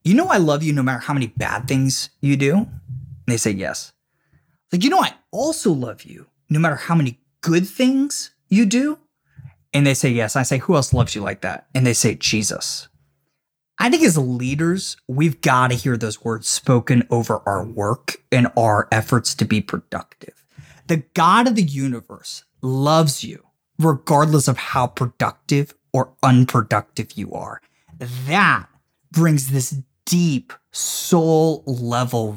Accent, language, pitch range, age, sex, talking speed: American, English, 125-175 Hz, 30-49, male, 165 wpm